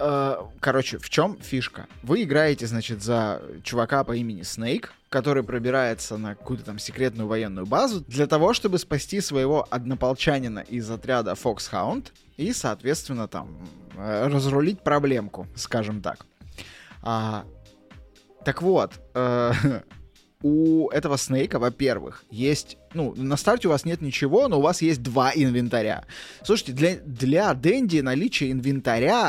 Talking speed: 130 wpm